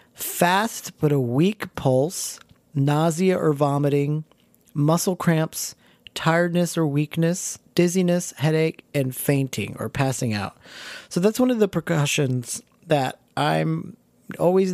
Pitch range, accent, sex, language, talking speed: 125-160 Hz, American, male, English, 120 wpm